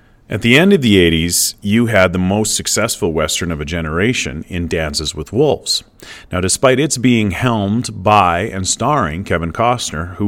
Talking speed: 175 wpm